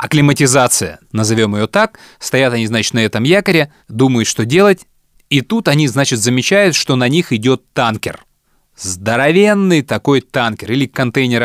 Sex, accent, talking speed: male, native, 145 wpm